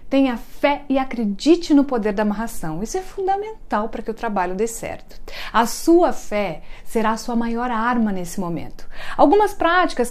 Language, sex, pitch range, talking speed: Portuguese, female, 225-275 Hz, 170 wpm